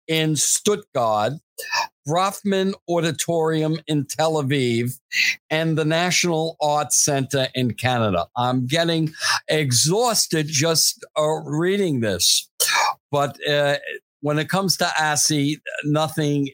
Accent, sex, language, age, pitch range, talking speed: American, male, English, 60-79, 140-165 Hz, 105 wpm